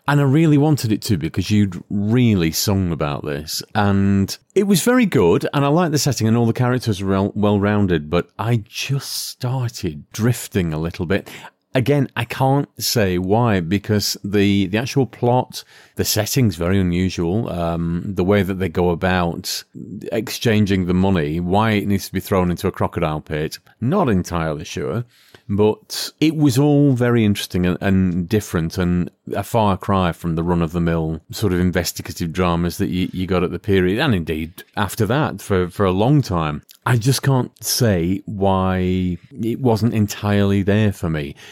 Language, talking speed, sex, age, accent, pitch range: English, 175 wpm, male, 40-59, British, 90-115 Hz